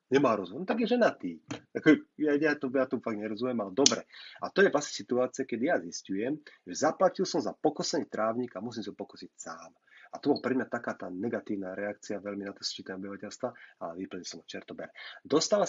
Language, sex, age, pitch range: Slovak, male, 30-49, 105-145 Hz